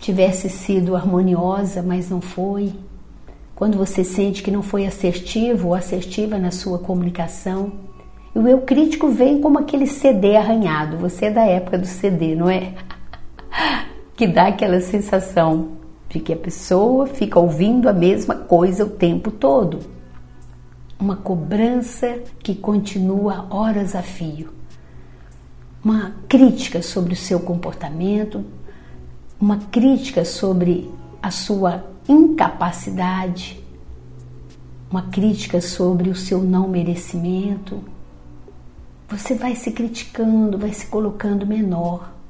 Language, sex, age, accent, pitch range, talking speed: Portuguese, female, 50-69, Brazilian, 175-215 Hz, 120 wpm